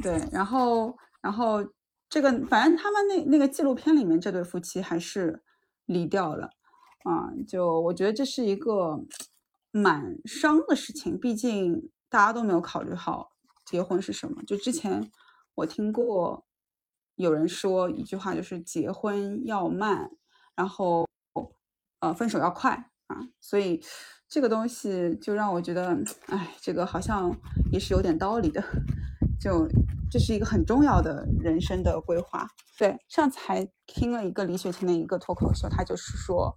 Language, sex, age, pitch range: Chinese, female, 20-39, 185-275 Hz